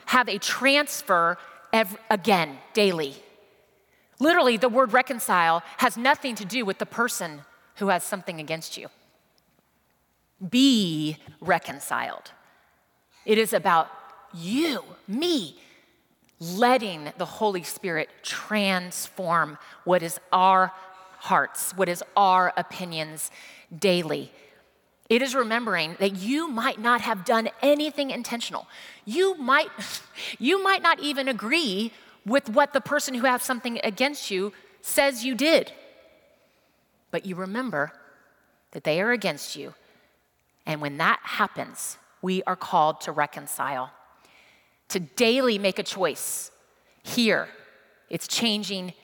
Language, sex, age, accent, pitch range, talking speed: English, female, 30-49, American, 180-255 Hz, 115 wpm